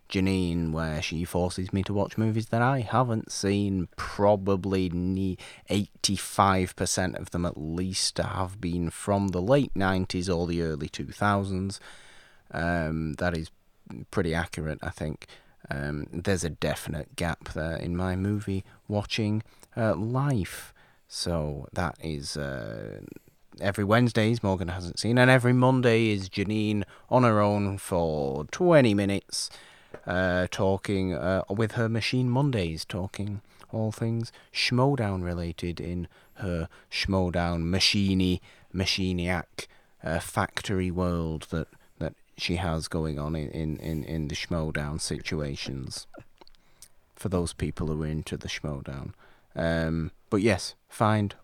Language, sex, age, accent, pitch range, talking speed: English, male, 30-49, British, 85-105 Hz, 130 wpm